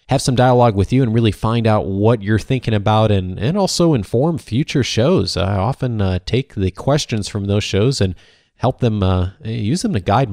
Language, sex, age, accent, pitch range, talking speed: English, male, 30-49, American, 105-145 Hz, 210 wpm